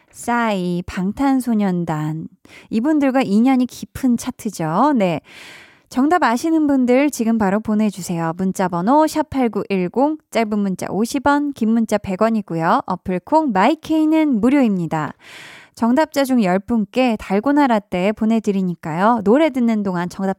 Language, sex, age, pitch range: Korean, female, 20-39, 190-275 Hz